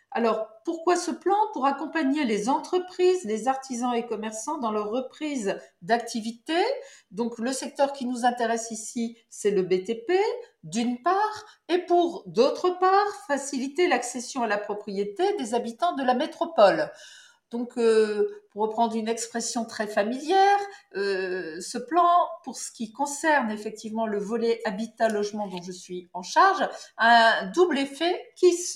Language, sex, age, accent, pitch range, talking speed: French, female, 50-69, French, 215-330 Hz, 150 wpm